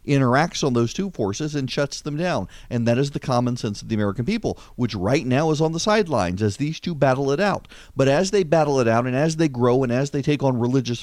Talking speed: 260 wpm